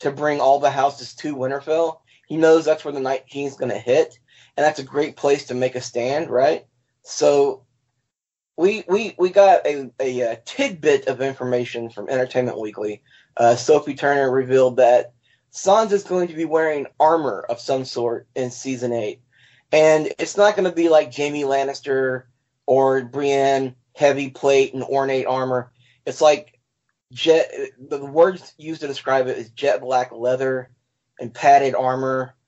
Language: English